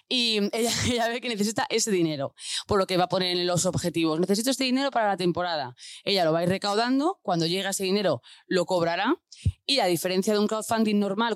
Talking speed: 220 wpm